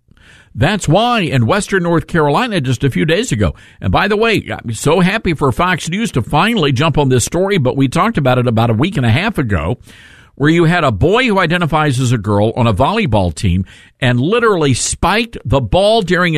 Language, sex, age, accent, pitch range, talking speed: English, male, 50-69, American, 115-180 Hz, 215 wpm